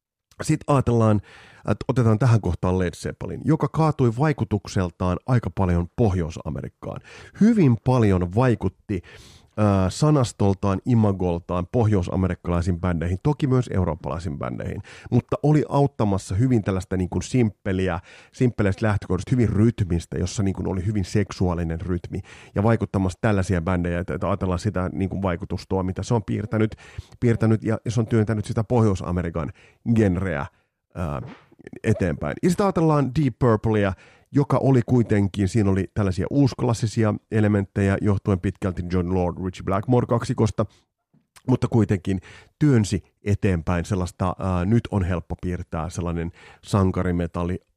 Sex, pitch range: male, 90-120 Hz